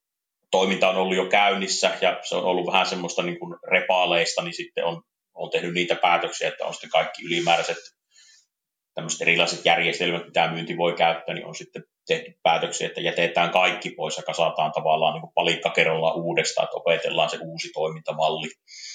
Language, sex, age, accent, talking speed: Finnish, male, 30-49, native, 165 wpm